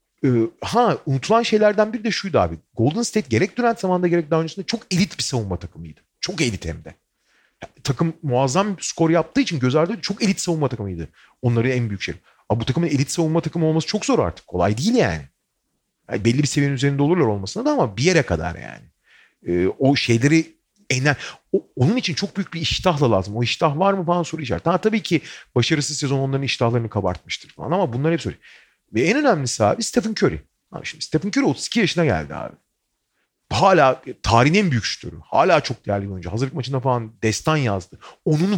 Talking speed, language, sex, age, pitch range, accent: 200 wpm, Turkish, male, 40-59, 120-185 Hz, native